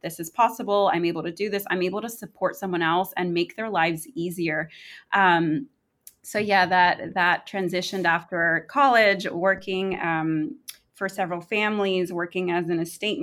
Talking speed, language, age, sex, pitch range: 160 wpm, English, 20-39, female, 170-195 Hz